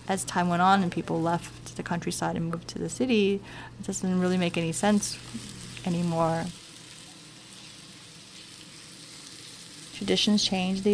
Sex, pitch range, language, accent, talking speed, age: female, 170-200 Hz, English, American, 130 wpm, 20-39